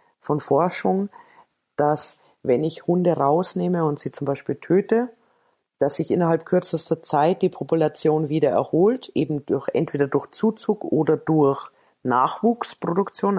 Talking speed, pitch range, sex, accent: 130 wpm, 145-185 Hz, female, German